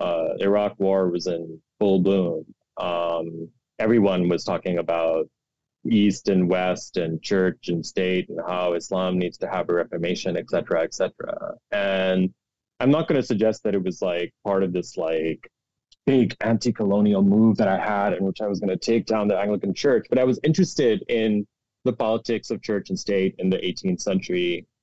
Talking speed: 185 wpm